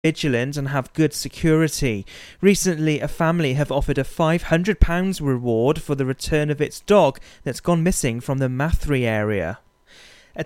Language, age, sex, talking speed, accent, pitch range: English, 30-49, male, 155 wpm, British, 130-160 Hz